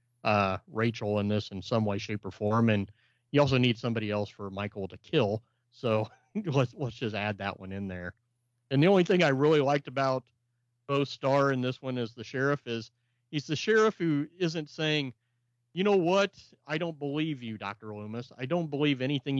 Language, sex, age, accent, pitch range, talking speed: English, male, 40-59, American, 105-130 Hz, 200 wpm